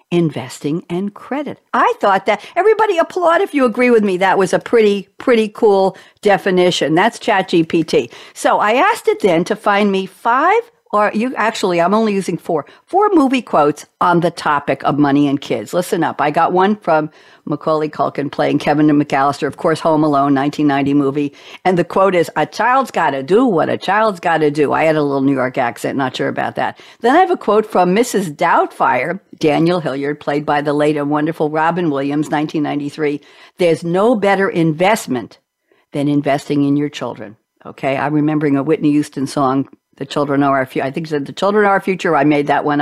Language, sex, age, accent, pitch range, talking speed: English, female, 60-79, American, 150-210 Hz, 205 wpm